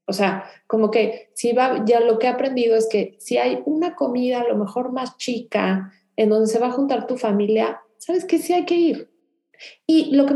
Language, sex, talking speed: Spanish, female, 225 wpm